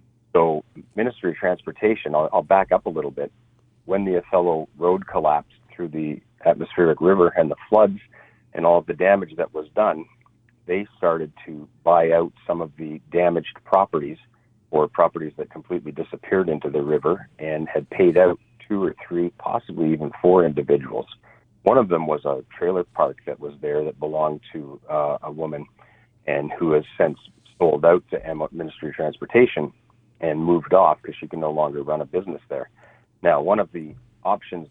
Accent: American